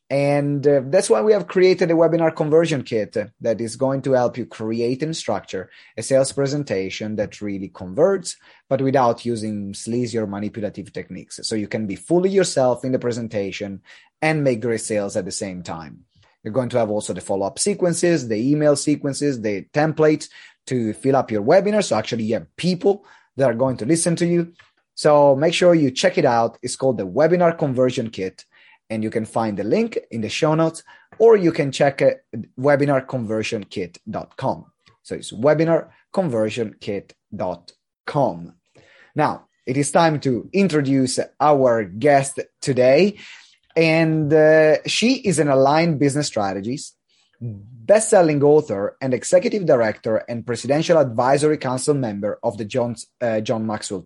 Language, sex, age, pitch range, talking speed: English, male, 30-49, 115-160 Hz, 160 wpm